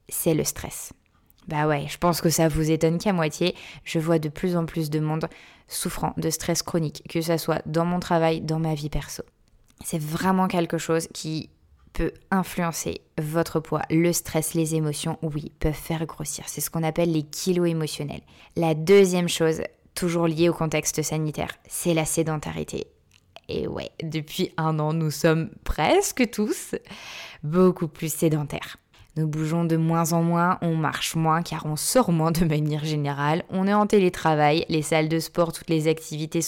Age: 20-39